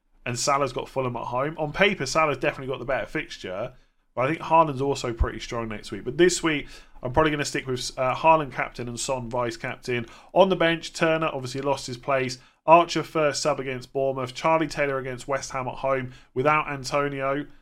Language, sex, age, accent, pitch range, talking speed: English, male, 30-49, British, 120-150 Hz, 205 wpm